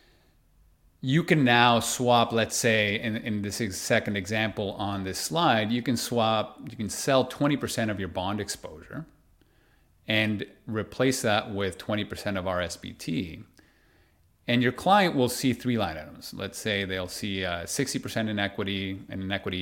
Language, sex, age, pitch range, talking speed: English, male, 30-49, 95-120 Hz, 155 wpm